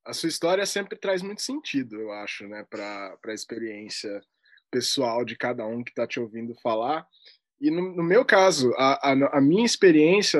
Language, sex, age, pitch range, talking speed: Portuguese, male, 20-39, 140-205 Hz, 185 wpm